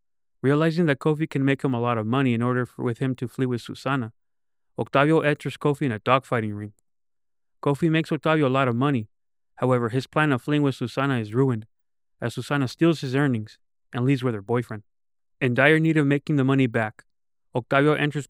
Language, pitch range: English, 115-145 Hz